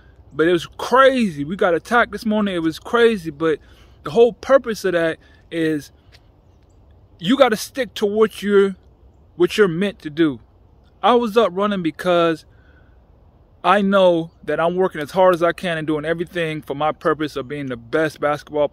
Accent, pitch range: American, 135-205 Hz